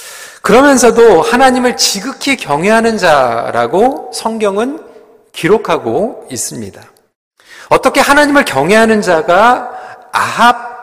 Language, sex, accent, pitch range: Korean, male, native, 180-245 Hz